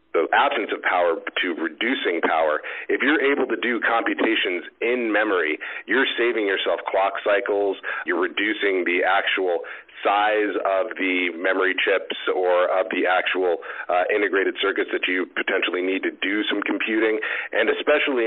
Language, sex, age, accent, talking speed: English, male, 40-59, American, 150 wpm